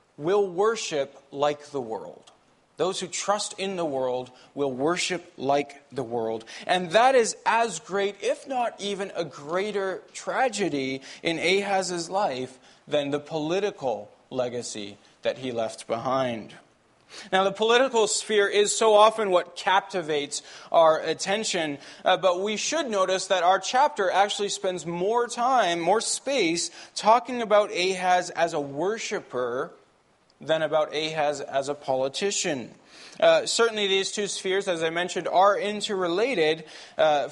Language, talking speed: English, 140 wpm